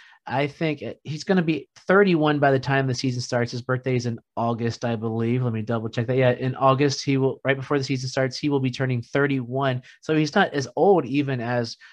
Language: English